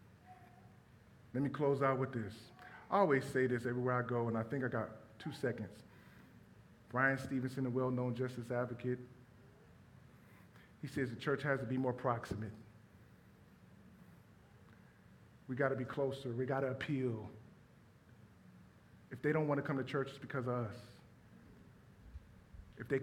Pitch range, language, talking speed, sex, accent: 120-155 Hz, English, 145 wpm, male, American